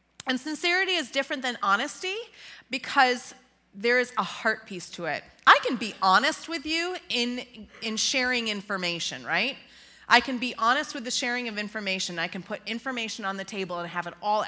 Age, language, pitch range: 30-49, English, 180-245 Hz